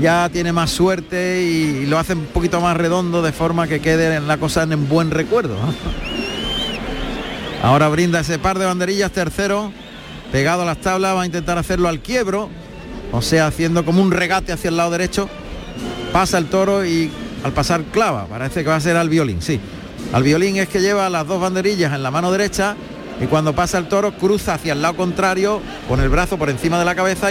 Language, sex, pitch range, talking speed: Spanish, male, 160-195 Hz, 205 wpm